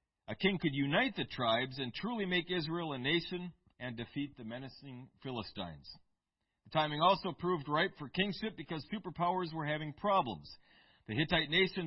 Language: English